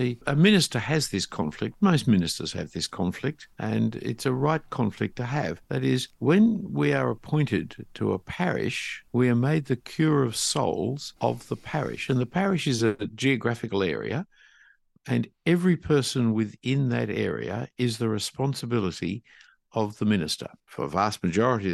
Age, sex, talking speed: 60-79, male, 165 wpm